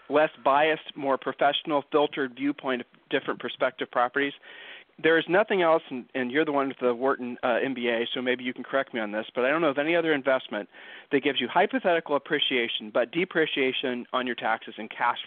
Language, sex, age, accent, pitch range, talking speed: English, male, 40-59, American, 125-155 Hz, 205 wpm